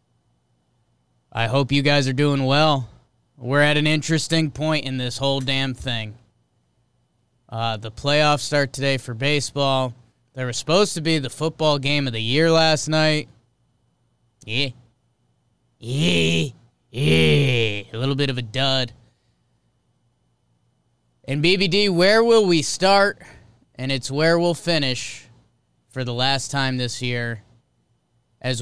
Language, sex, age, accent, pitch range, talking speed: English, male, 20-39, American, 120-155 Hz, 135 wpm